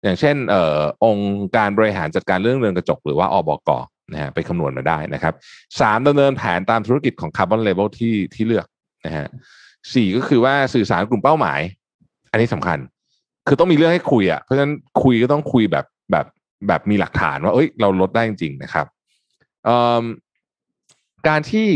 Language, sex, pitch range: Thai, male, 100-130 Hz